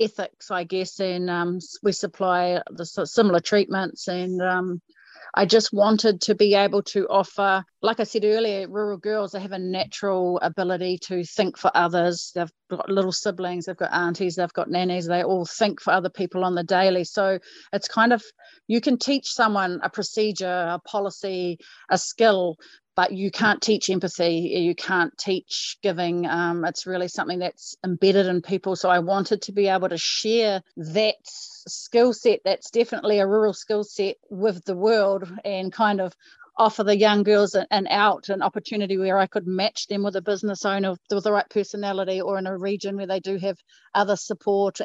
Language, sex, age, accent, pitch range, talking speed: English, female, 30-49, Australian, 185-210 Hz, 185 wpm